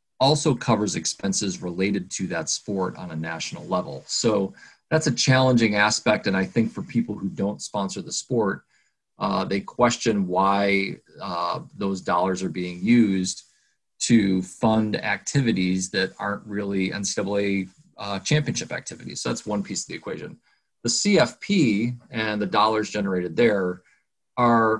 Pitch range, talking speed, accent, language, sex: 95-120 Hz, 150 wpm, American, English, male